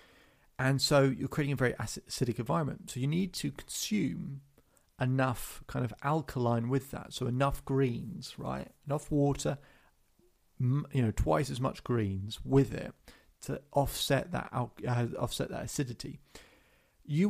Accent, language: British, English